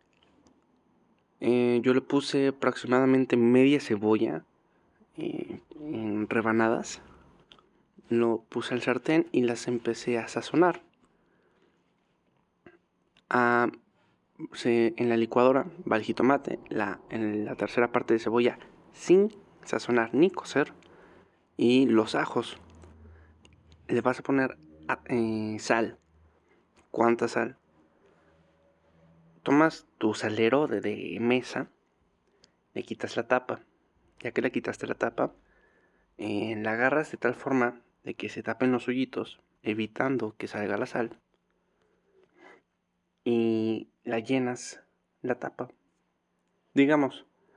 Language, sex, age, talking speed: Spanish, male, 20-39, 110 wpm